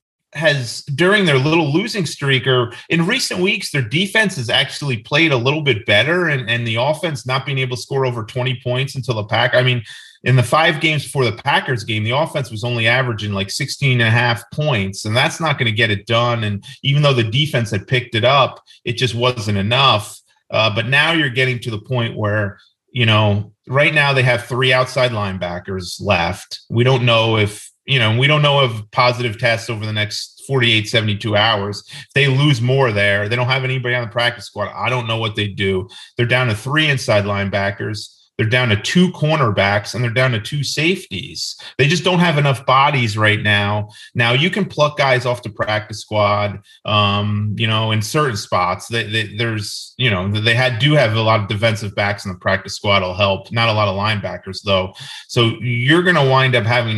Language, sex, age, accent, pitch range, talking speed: English, male, 30-49, American, 105-135 Hz, 215 wpm